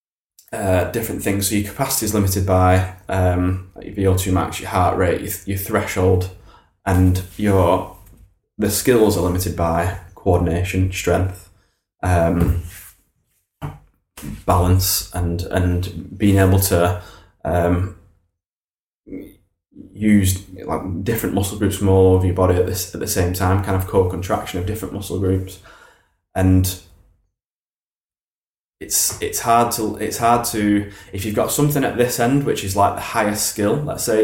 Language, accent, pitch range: English, British, 95-105 Hz